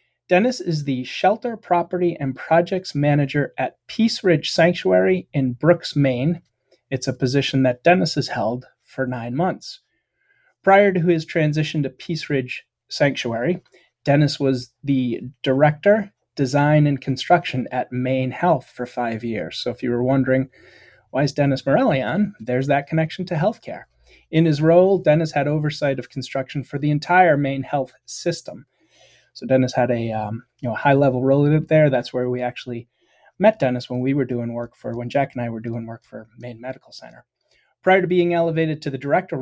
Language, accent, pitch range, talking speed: English, American, 130-165 Hz, 175 wpm